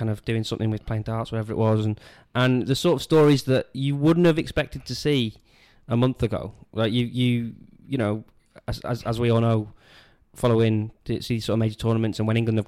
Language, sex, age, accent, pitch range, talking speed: English, male, 20-39, British, 110-120 Hz, 225 wpm